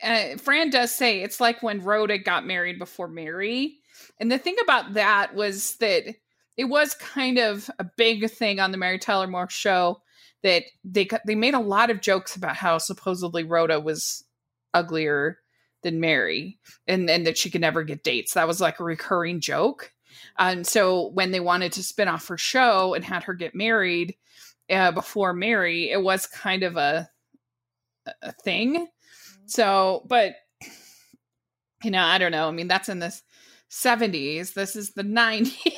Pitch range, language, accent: 180-235 Hz, English, American